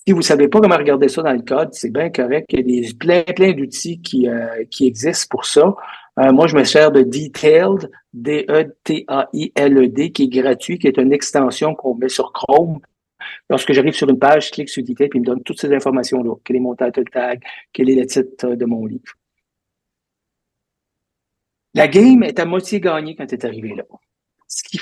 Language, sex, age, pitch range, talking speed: French, male, 50-69, 130-185 Hz, 210 wpm